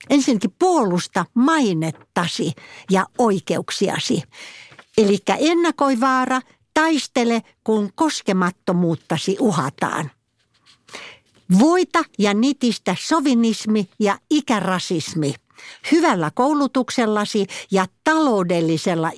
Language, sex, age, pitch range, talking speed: Finnish, female, 60-79, 170-255 Hz, 70 wpm